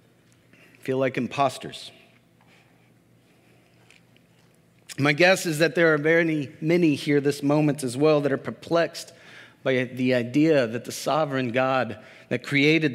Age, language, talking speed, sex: 40-59, English, 130 wpm, male